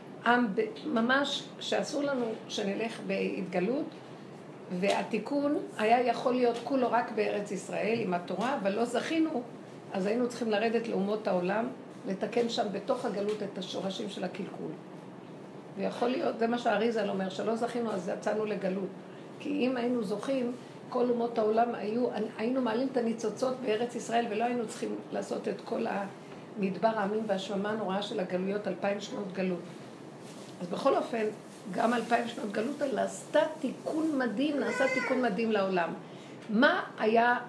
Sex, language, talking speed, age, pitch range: female, Hebrew, 145 wpm, 50-69, 200-245 Hz